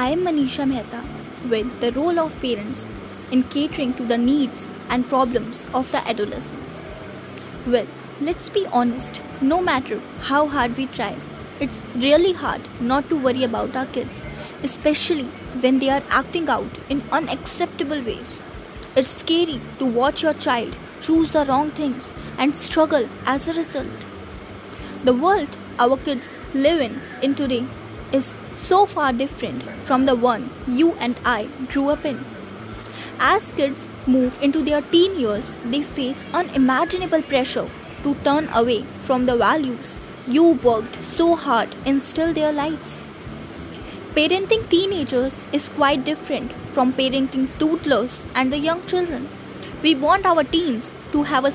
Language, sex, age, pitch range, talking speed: Hindi, female, 20-39, 255-315 Hz, 150 wpm